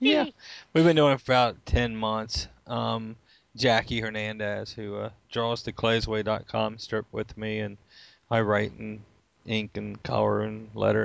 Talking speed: 155 wpm